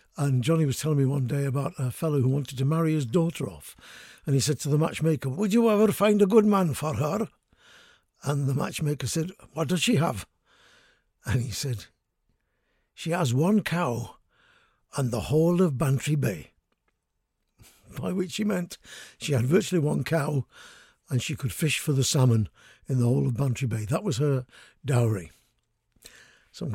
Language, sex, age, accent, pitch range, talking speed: English, male, 60-79, British, 125-165 Hz, 180 wpm